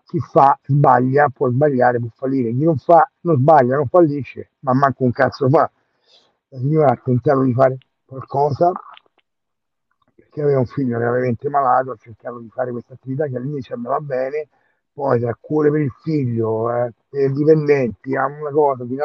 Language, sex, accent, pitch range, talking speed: Italian, male, native, 120-145 Hz, 185 wpm